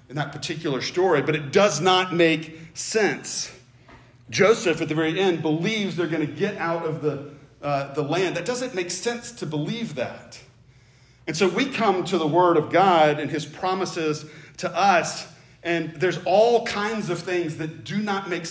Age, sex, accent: 40-59, male, American